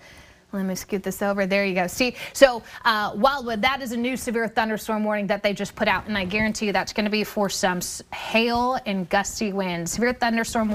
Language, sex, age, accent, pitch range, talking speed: English, female, 20-39, American, 210-260 Hz, 225 wpm